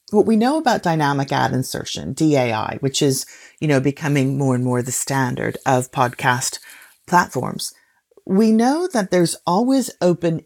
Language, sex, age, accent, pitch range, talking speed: English, female, 40-59, American, 140-185 Hz, 155 wpm